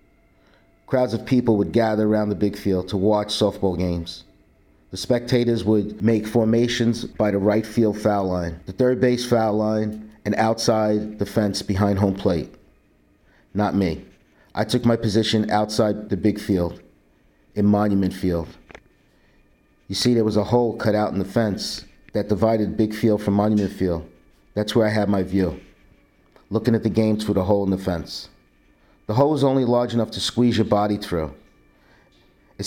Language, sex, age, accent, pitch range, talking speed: English, male, 50-69, American, 95-115 Hz, 175 wpm